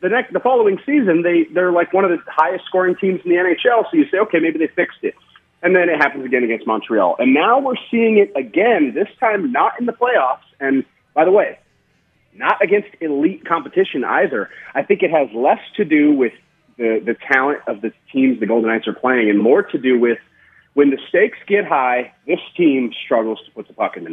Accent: American